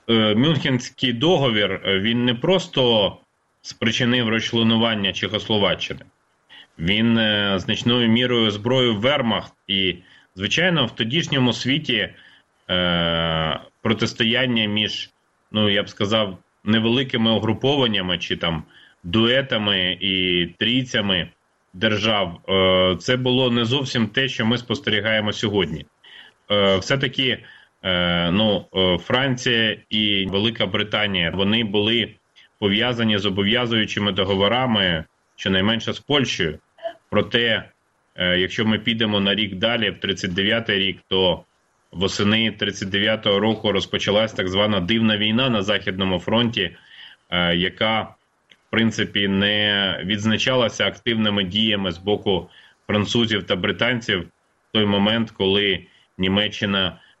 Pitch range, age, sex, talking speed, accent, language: 100-115 Hz, 30-49, male, 100 wpm, native, Ukrainian